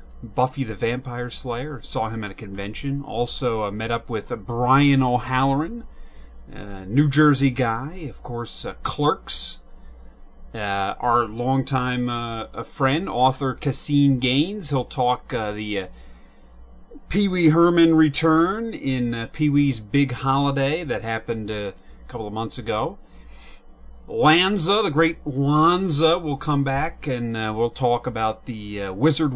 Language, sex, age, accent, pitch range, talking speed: English, male, 30-49, American, 110-140 Hz, 140 wpm